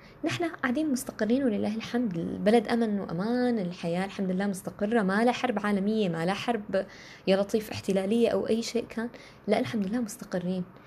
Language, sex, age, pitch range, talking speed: Arabic, female, 20-39, 180-235 Hz, 165 wpm